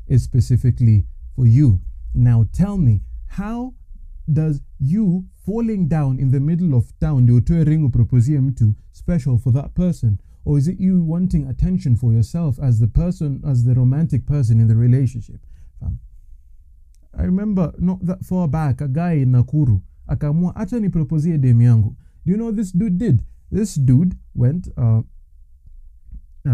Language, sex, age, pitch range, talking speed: English, male, 30-49, 115-170 Hz, 135 wpm